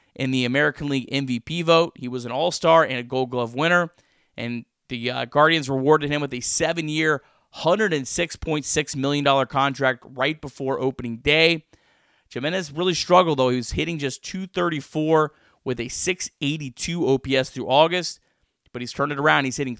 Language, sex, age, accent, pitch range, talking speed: English, male, 30-49, American, 125-155 Hz, 160 wpm